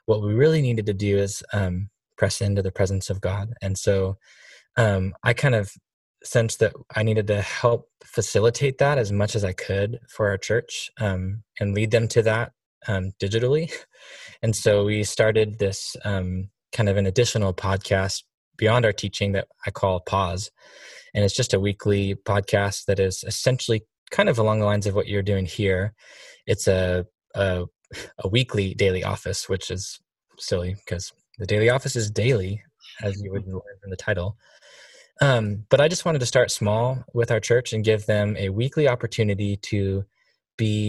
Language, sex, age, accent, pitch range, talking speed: English, male, 10-29, American, 95-115 Hz, 180 wpm